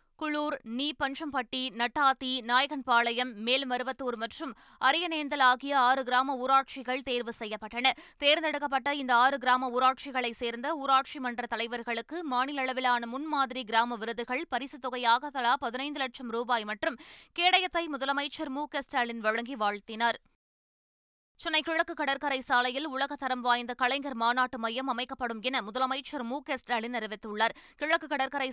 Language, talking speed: Tamil, 120 wpm